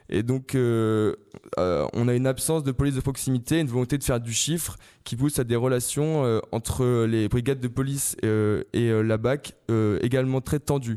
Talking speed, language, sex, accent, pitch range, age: 210 wpm, French, male, French, 120-140 Hz, 20-39